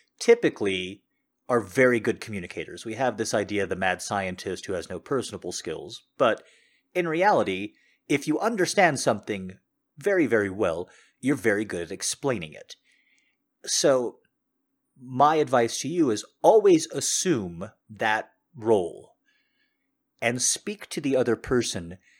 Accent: American